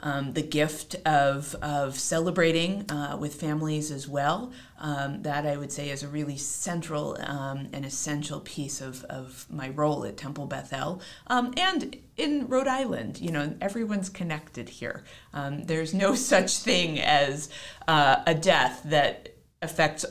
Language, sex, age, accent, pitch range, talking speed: English, female, 30-49, American, 140-190 Hz, 155 wpm